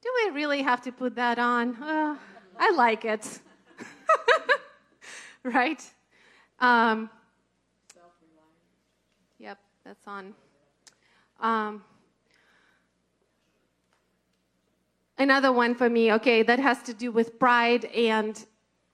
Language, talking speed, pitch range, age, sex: English, 95 wpm, 215-250 Hz, 30-49, female